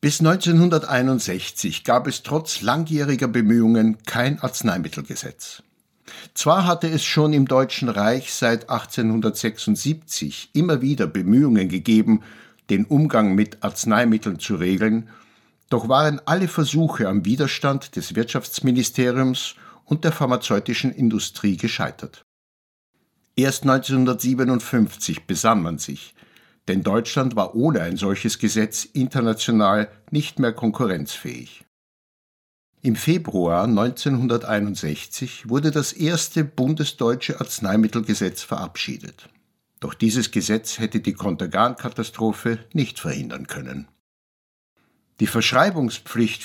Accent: German